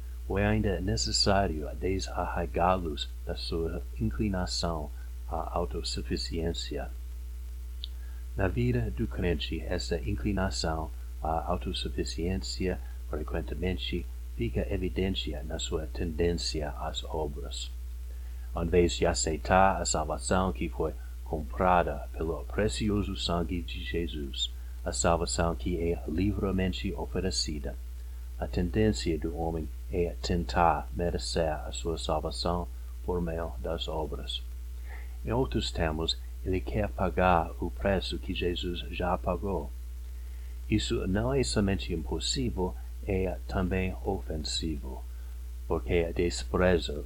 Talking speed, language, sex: 105 wpm, Portuguese, male